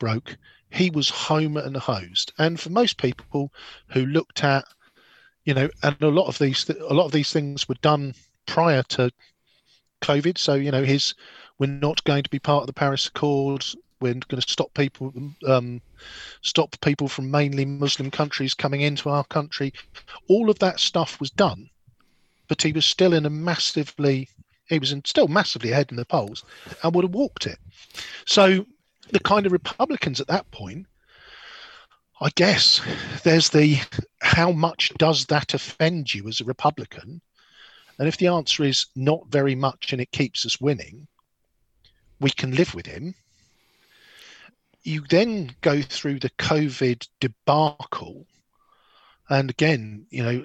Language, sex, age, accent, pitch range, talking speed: English, male, 40-59, British, 130-160 Hz, 165 wpm